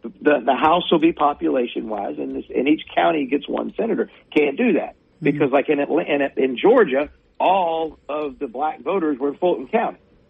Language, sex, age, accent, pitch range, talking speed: English, male, 50-69, American, 130-155 Hz, 190 wpm